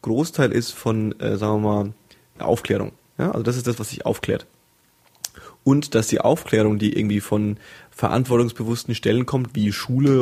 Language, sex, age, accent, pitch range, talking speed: German, male, 30-49, German, 110-125 Hz, 165 wpm